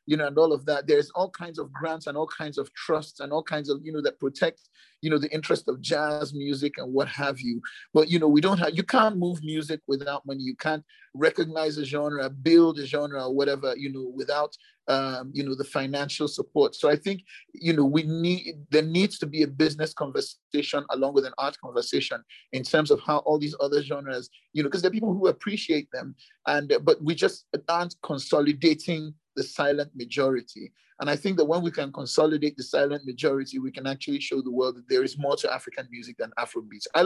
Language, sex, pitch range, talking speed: English, male, 135-165 Hz, 225 wpm